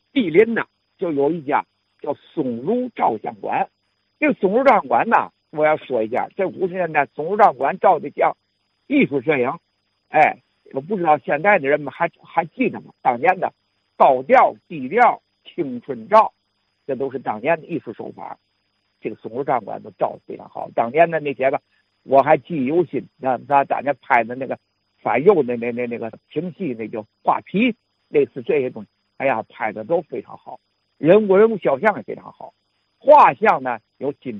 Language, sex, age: Chinese, male, 60-79